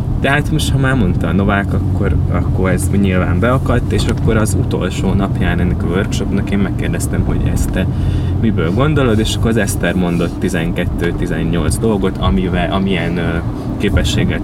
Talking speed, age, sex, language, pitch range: 155 wpm, 20-39, male, Hungarian, 90-105 Hz